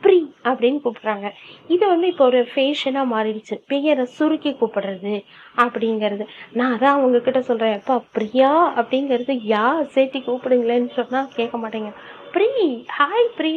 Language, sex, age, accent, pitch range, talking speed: Tamil, female, 20-39, native, 230-305 Hz, 95 wpm